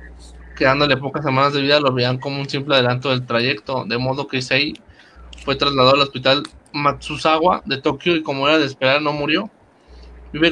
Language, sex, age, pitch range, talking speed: Spanish, male, 20-39, 125-150 Hz, 185 wpm